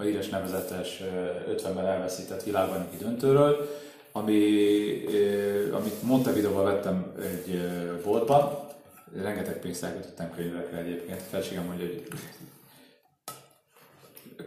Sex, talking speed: male, 85 wpm